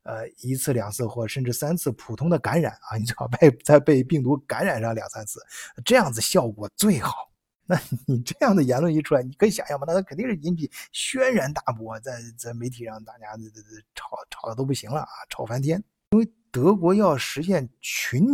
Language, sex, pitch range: Chinese, male, 120-170 Hz